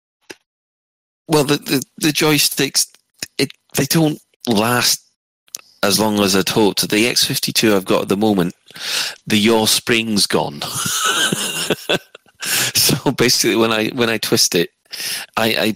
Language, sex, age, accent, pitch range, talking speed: English, male, 30-49, British, 85-130 Hz, 135 wpm